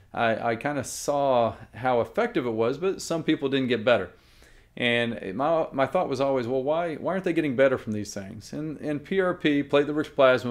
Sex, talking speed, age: male, 205 wpm, 40-59